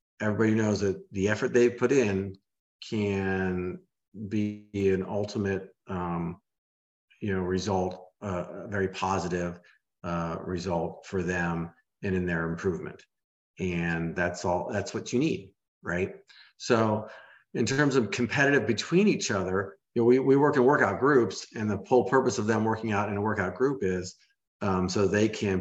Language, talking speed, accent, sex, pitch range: English, 160 wpm, American, male, 90-110 Hz